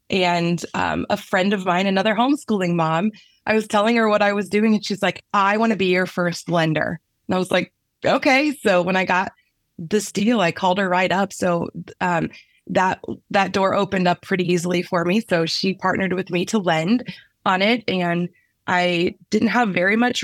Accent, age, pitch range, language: American, 20-39, 175-205 Hz, English